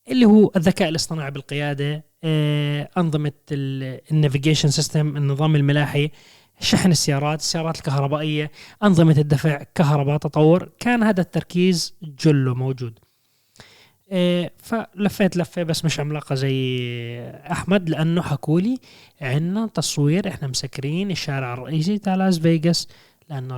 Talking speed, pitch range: 125 wpm, 135-165 Hz